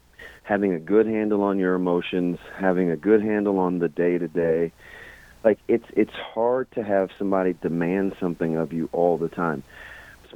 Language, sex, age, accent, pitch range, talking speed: English, male, 40-59, American, 85-105 Hz, 170 wpm